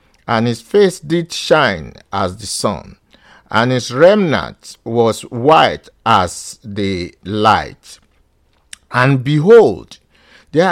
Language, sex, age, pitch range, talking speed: English, male, 50-69, 115-165 Hz, 105 wpm